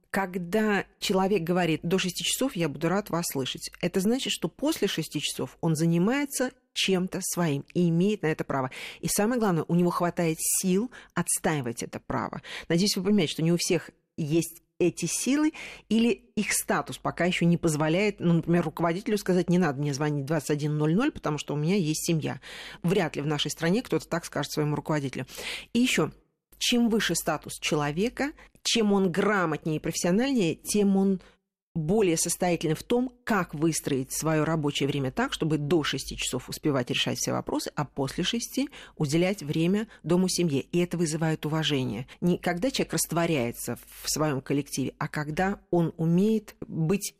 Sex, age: female, 40-59